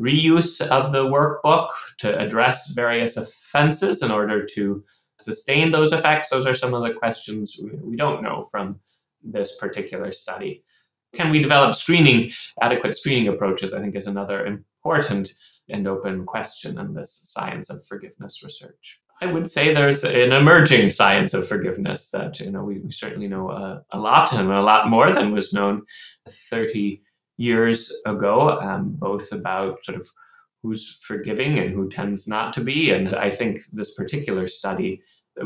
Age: 20-39